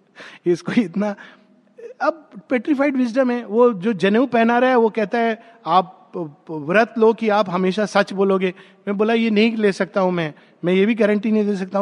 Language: Hindi